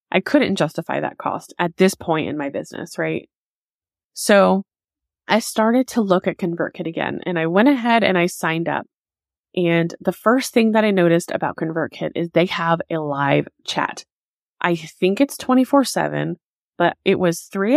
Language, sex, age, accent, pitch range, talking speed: English, female, 20-39, American, 165-200 Hz, 180 wpm